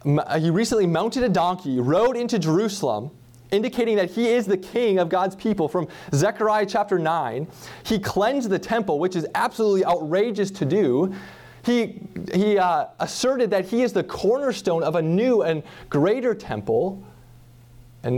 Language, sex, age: English, male, 20-39